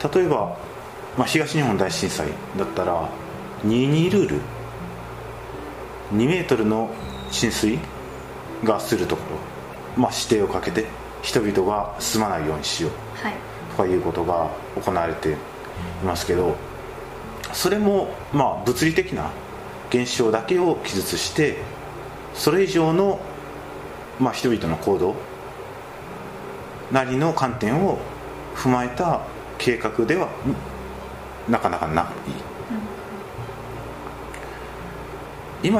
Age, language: 40-59, Japanese